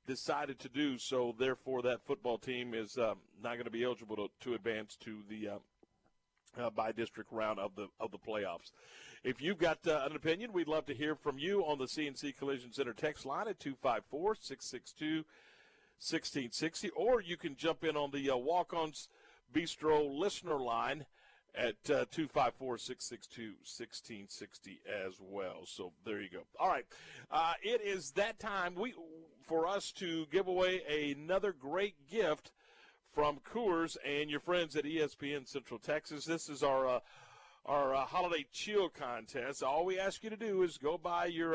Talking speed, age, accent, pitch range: 185 wpm, 50-69, American, 135-180 Hz